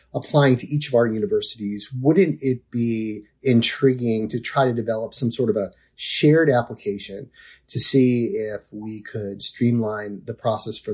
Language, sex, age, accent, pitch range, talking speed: English, male, 30-49, American, 110-135 Hz, 160 wpm